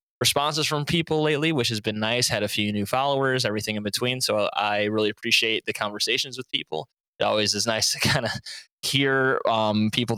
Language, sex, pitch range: English, male, 105-120 Hz